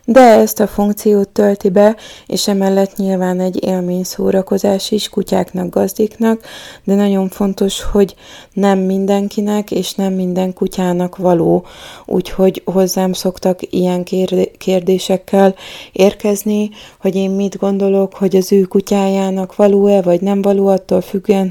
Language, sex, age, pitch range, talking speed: Hungarian, female, 30-49, 185-205 Hz, 125 wpm